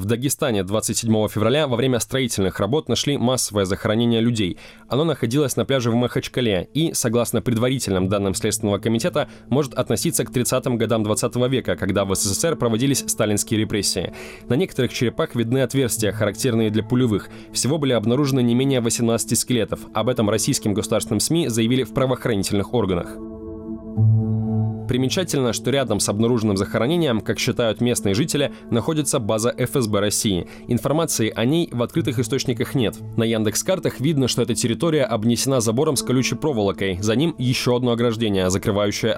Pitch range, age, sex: 110-130 Hz, 20-39, male